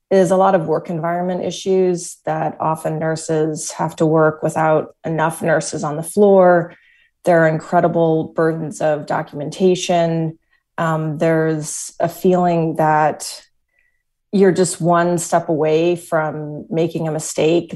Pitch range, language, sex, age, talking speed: 160-185 Hz, English, female, 30-49, 130 wpm